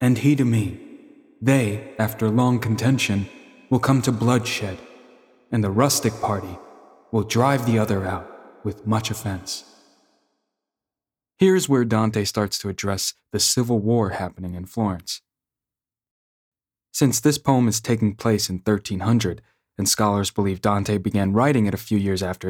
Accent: American